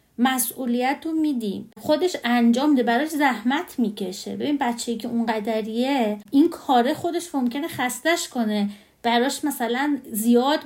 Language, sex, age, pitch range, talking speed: Persian, female, 30-49, 230-295 Hz, 140 wpm